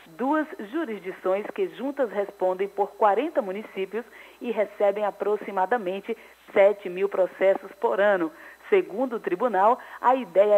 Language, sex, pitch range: Portuguese, female, 195-255 Hz